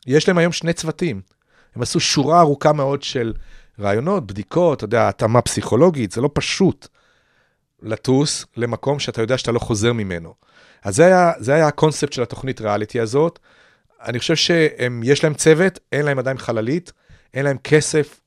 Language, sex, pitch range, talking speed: Hebrew, male, 115-160 Hz, 170 wpm